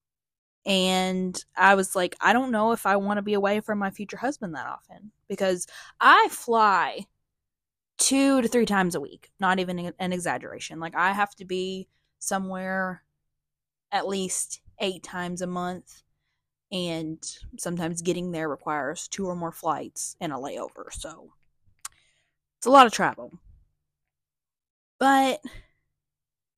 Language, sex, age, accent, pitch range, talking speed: English, female, 20-39, American, 165-195 Hz, 140 wpm